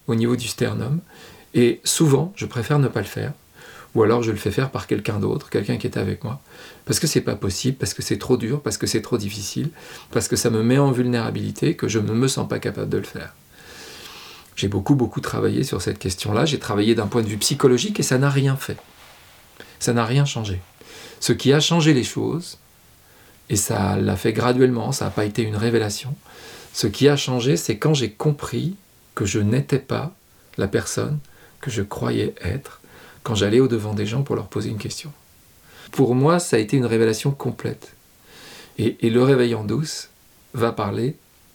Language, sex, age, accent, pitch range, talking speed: French, male, 40-59, French, 110-140 Hz, 205 wpm